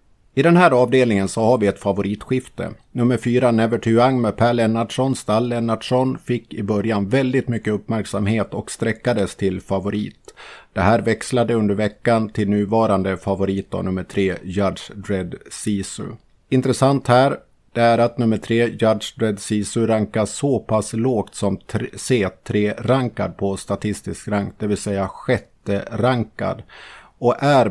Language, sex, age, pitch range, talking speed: Swedish, male, 50-69, 100-120 Hz, 145 wpm